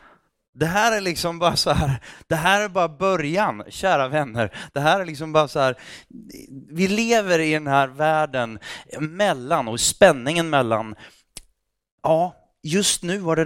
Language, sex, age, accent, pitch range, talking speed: Swedish, male, 30-49, native, 125-170 Hz, 160 wpm